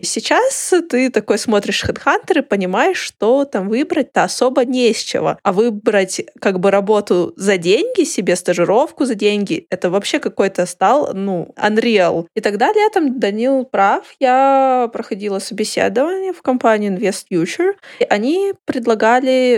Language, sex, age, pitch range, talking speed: Russian, female, 20-39, 200-275 Hz, 135 wpm